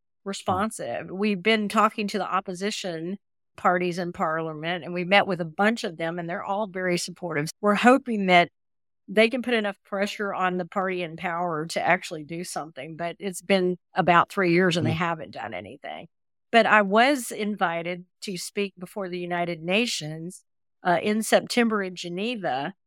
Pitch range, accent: 175-205 Hz, American